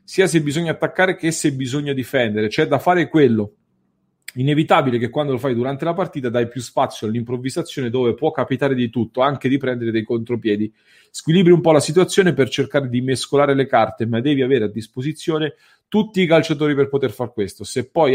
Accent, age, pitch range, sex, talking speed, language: Italian, 40-59, 120-155 Hz, male, 195 wpm, English